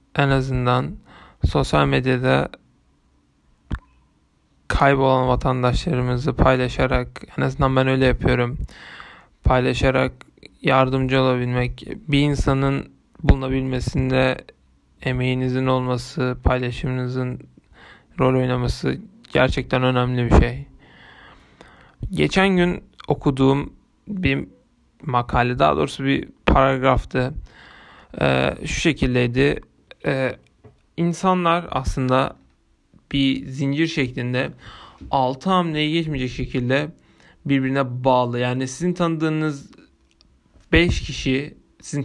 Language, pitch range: Turkish, 125-145 Hz